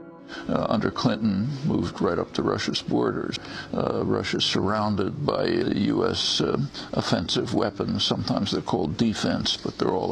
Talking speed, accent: 150 wpm, American